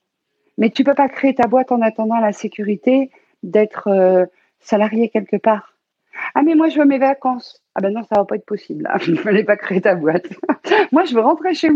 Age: 50-69